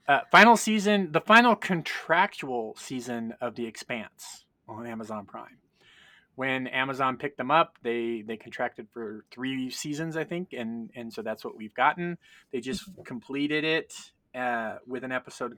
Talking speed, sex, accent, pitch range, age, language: 160 wpm, male, American, 115-155 Hz, 30-49, English